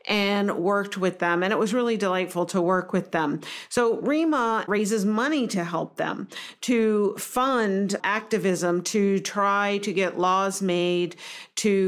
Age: 50-69